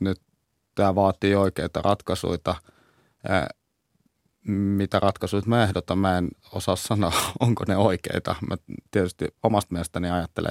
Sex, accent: male, native